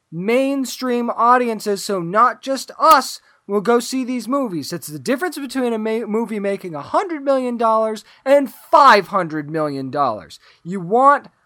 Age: 20-39